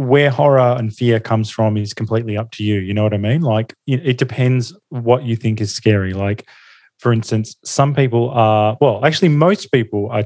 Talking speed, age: 205 wpm, 20-39